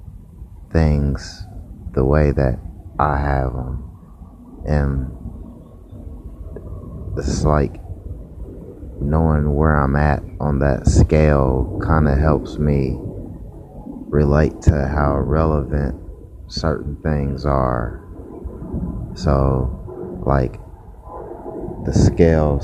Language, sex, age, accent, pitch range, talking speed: English, male, 30-49, American, 70-90 Hz, 85 wpm